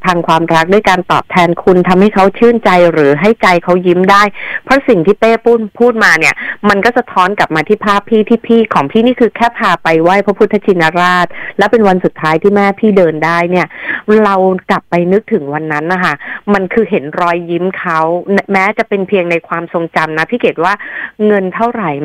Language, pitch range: Thai, 170-215 Hz